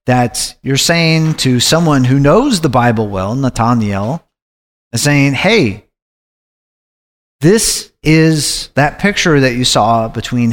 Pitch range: 115-145 Hz